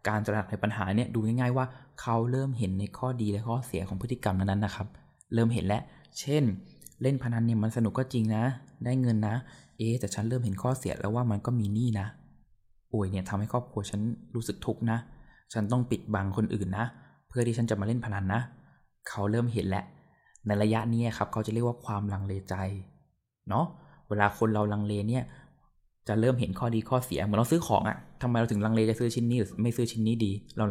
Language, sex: Thai, male